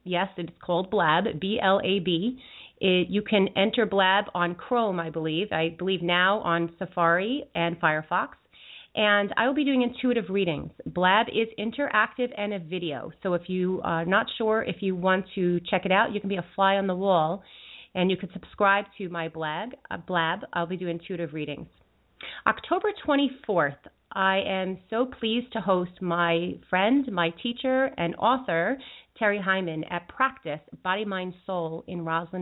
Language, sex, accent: English, female, American